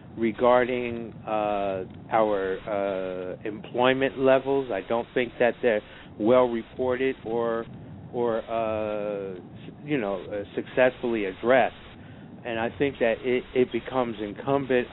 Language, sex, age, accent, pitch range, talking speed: English, male, 50-69, American, 105-125 Hz, 115 wpm